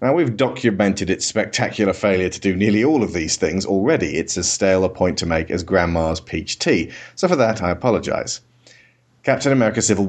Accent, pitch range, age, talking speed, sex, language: British, 95-120 Hz, 40-59, 195 wpm, male, English